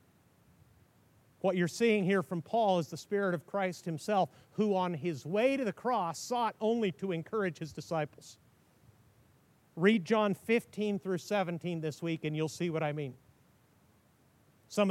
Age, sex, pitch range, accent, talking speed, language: 50-69, male, 160-210 Hz, American, 155 wpm, English